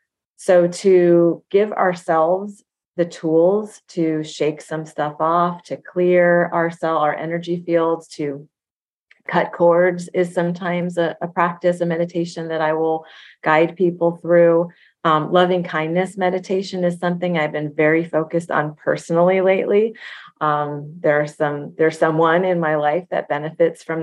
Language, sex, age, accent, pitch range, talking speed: English, female, 30-49, American, 155-180 Hz, 145 wpm